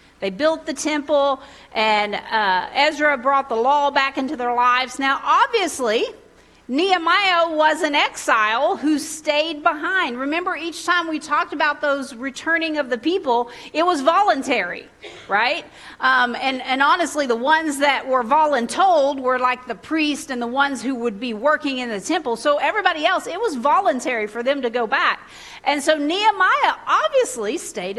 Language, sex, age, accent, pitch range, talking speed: English, female, 40-59, American, 245-320 Hz, 165 wpm